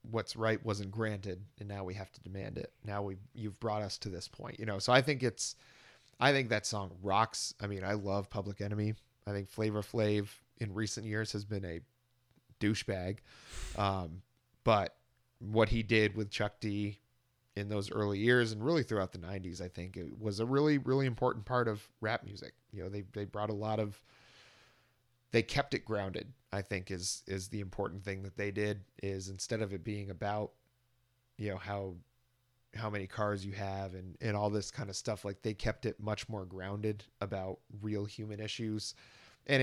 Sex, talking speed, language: male, 200 wpm, English